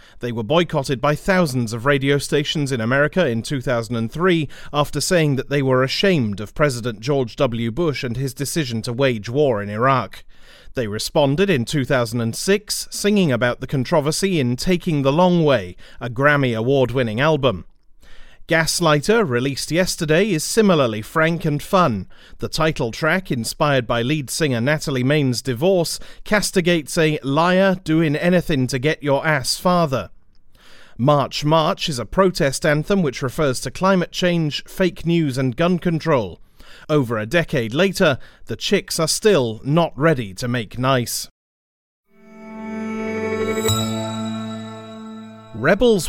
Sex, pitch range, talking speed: male, 125-170 Hz, 140 wpm